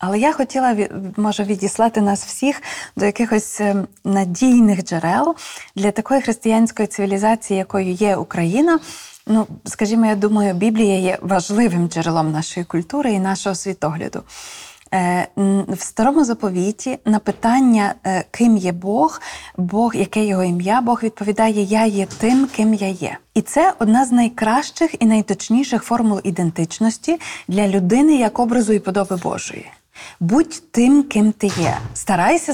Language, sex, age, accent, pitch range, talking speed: Ukrainian, female, 20-39, native, 195-245 Hz, 135 wpm